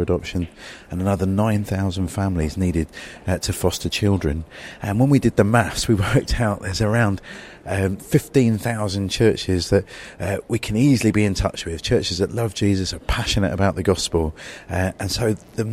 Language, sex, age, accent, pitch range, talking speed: English, male, 40-59, British, 90-110 Hz, 175 wpm